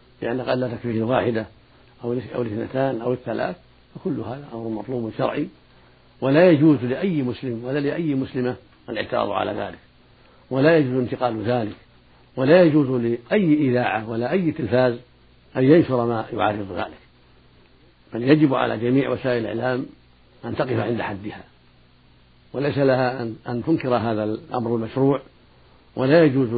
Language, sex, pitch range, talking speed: Arabic, male, 110-130 Hz, 140 wpm